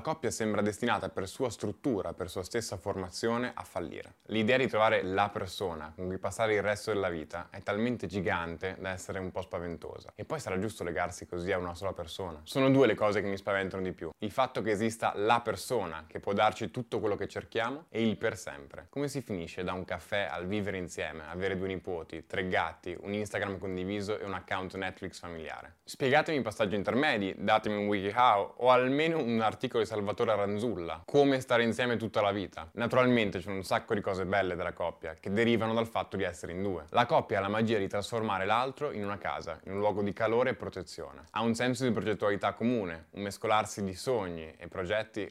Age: 10-29